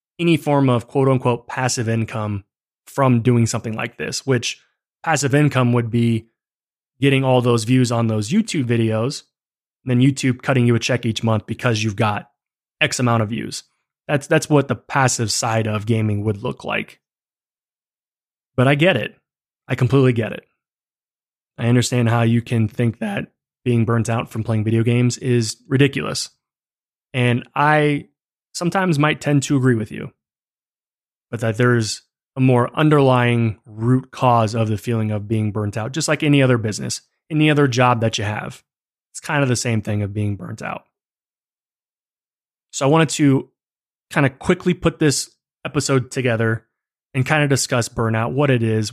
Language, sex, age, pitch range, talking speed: English, male, 20-39, 115-135 Hz, 170 wpm